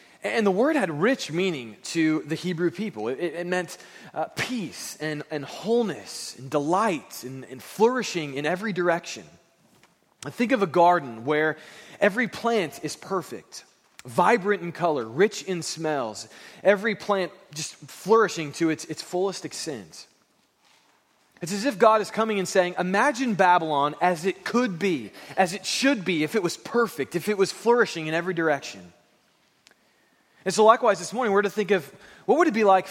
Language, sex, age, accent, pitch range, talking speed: English, male, 20-39, American, 155-210 Hz, 170 wpm